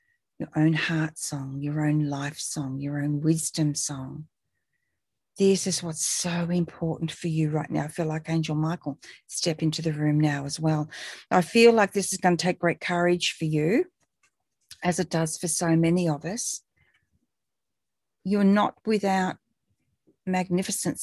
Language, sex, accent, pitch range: English, female, Australian, 165-195 Hz